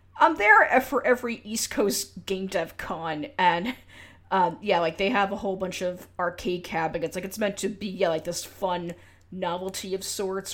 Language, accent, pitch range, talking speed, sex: English, American, 170-200 Hz, 190 wpm, female